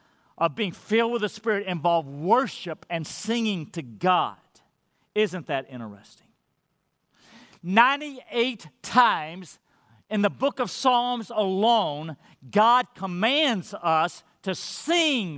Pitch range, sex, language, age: 175-235 Hz, male, English, 50-69